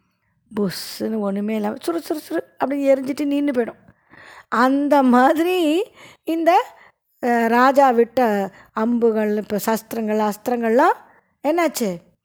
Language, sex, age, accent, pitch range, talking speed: Tamil, female, 20-39, native, 220-300 Hz, 90 wpm